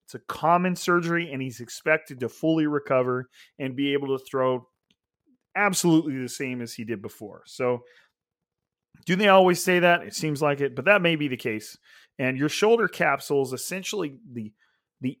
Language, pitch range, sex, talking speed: English, 120-150 Hz, male, 180 wpm